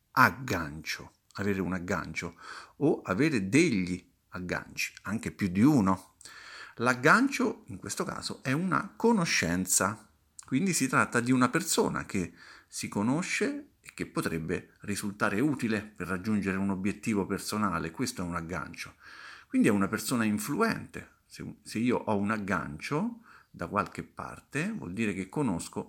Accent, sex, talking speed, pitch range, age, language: native, male, 140 wpm, 90-115 Hz, 50-69, Italian